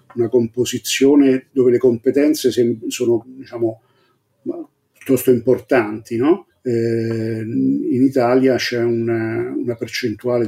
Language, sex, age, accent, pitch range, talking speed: Italian, male, 50-69, native, 115-130 Hz, 95 wpm